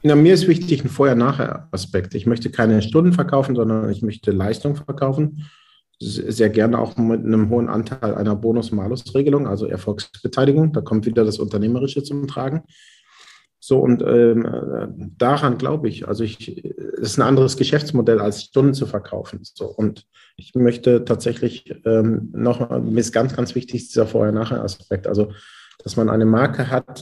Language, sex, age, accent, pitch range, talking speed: German, male, 40-59, German, 110-130 Hz, 155 wpm